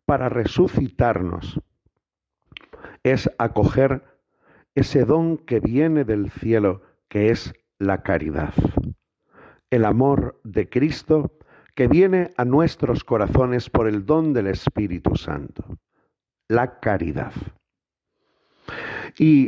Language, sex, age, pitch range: Spanish, male, 50-69, 105-155 Hz